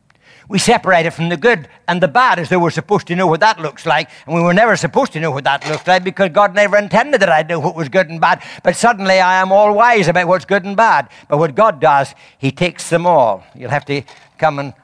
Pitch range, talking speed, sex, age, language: 125-185 Hz, 270 wpm, male, 60-79, English